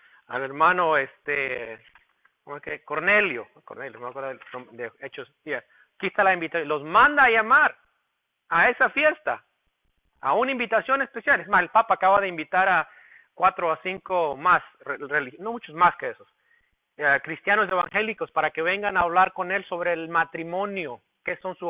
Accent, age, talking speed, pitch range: Mexican, 40-59, 160 wpm, 170-255 Hz